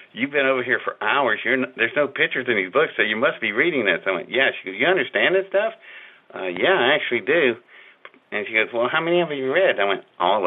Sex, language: male, English